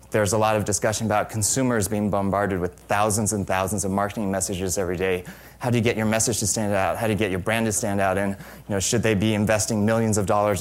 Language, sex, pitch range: English, male, 100-120 Hz